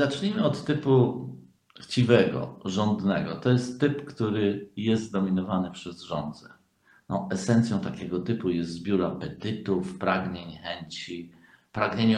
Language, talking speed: Polish, 115 wpm